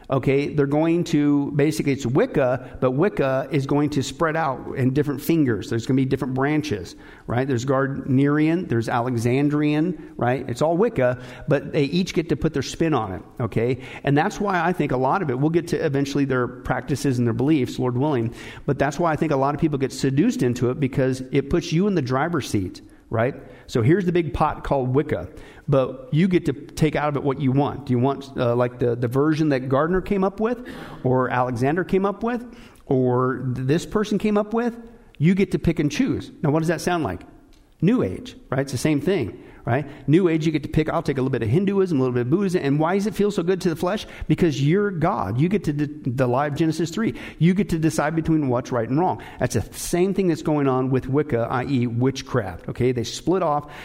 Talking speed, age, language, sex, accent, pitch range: 235 wpm, 50-69, English, male, American, 130-165 Hz